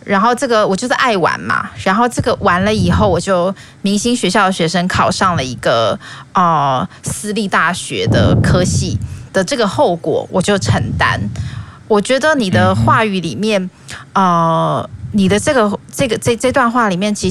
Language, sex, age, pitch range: Chinese, female, 20-39, 145-210 Hz